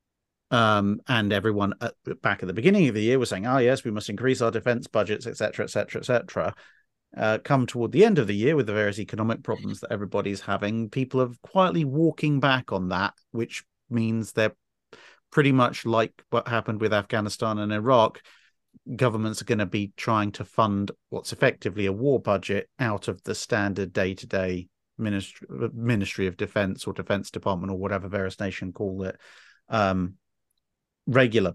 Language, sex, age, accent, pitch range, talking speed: English, male, 40-59, British, 100-115 Hz, 175 wpm